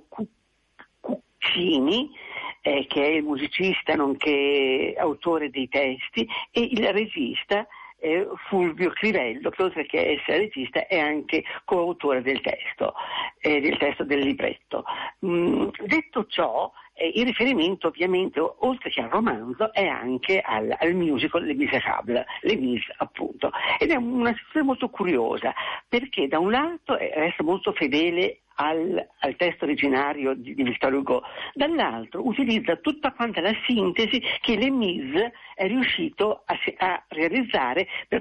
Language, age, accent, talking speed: Italian, 50-69, native, 140 wpm